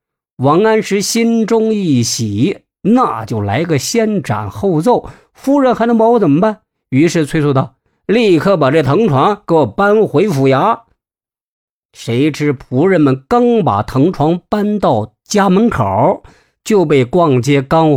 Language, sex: Chinese, male